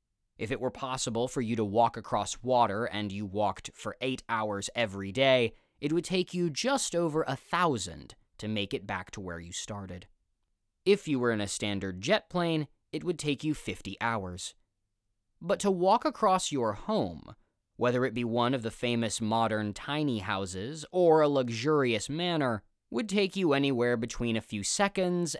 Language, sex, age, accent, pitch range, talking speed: English, male, 20-39, American, 105-150 Hz, 180 wpm